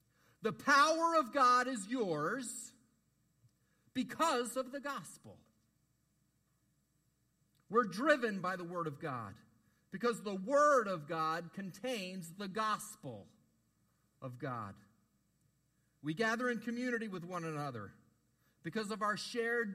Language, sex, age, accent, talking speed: English, male, 50-69, American, 115 wpm